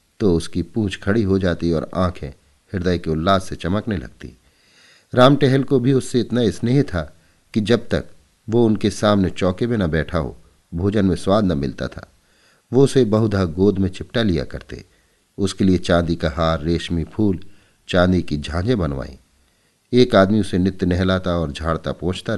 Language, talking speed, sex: Hindi, 175 wpm, male